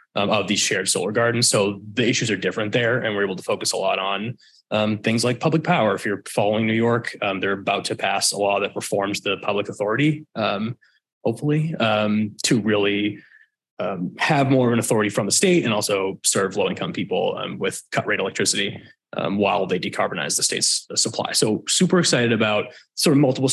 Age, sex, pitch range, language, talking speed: 20-39, male, 105-140 Hz, English, 205 wpm